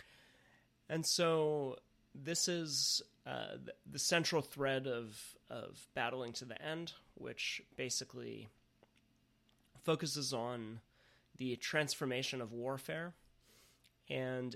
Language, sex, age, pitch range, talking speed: English, male, 30-49, 120-150 Hz, 95 wpm